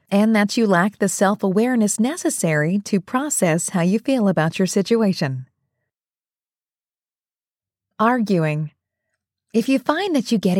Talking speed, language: 125 wpm, English